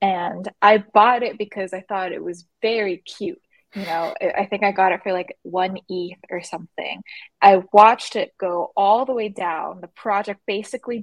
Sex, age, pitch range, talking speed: female, 20-39, 180-215 Hz, 190 wpm